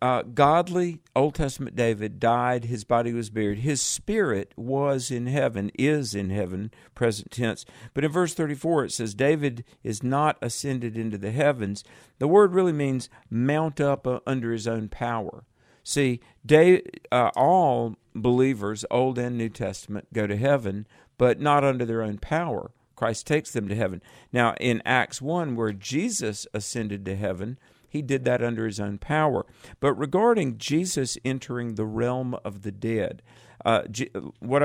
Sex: male